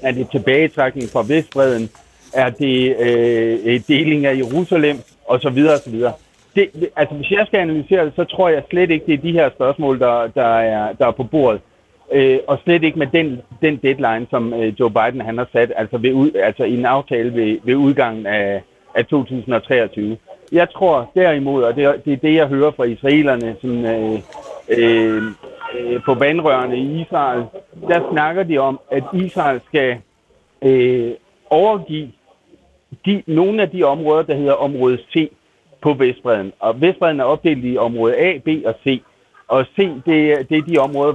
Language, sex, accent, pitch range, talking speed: Danish, male, native, 120-155 Hz, 180 wpm